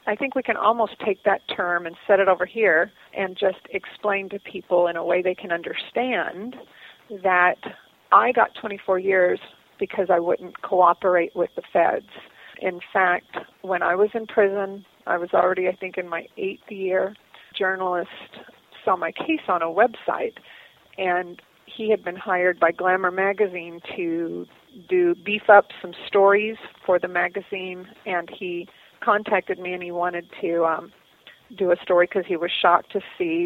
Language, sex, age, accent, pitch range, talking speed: English, female, 40-59, American, 175-210 Hz, 170 wpm